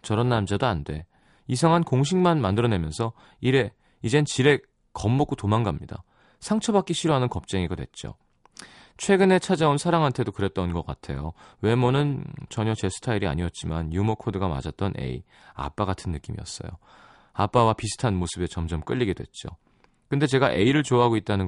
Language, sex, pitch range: Korean, male, 95-145 Hz